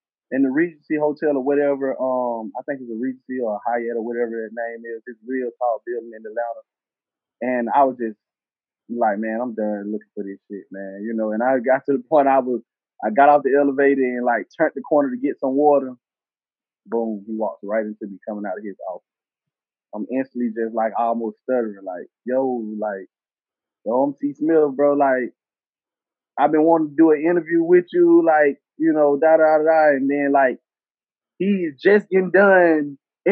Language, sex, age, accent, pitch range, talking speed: English, male, 20-39, American, 120-155 Hz, 200 wpm